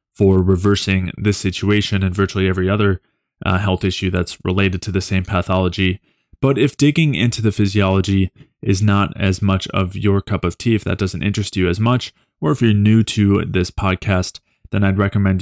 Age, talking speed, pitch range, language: 20-39, 190 wpm, 95-110 Hz, English